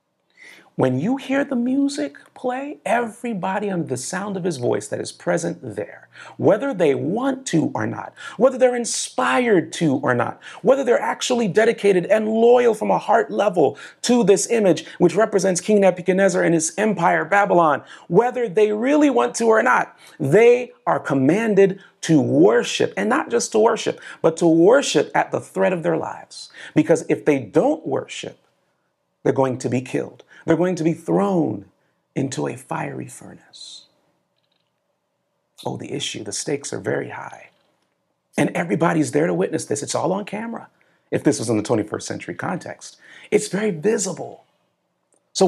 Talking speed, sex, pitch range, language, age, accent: 165 wpm, male, 160-235 Hz, English, 40-59, American